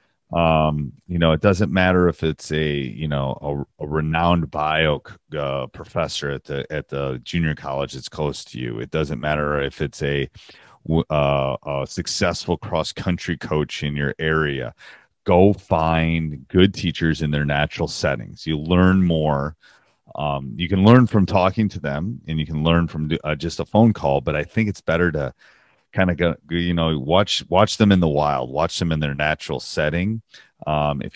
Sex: male